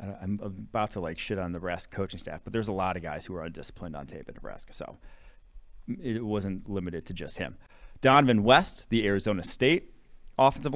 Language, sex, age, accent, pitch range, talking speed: English, male, 30-49, American, 95-120 Hz, 200 wpm